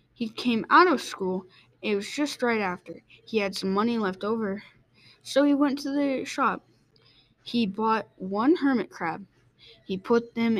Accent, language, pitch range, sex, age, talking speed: American, English, 185-235 Hz, female, 10-29, 170 wpm